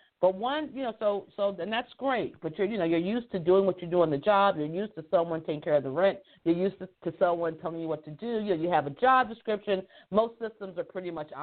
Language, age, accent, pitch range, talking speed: English, 50-69, American, 170-215 Hz, 285 wpm